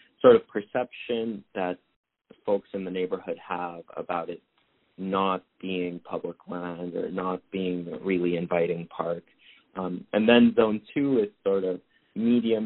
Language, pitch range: English, 85-100 Hz